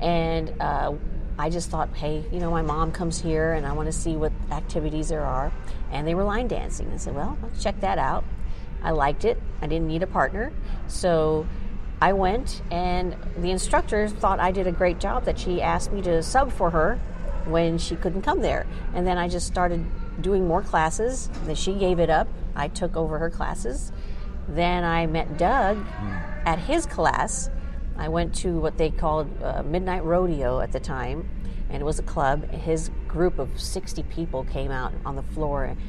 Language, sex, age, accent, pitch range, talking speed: English, female, 40-59, American, 150-180 Hz, 195 wpm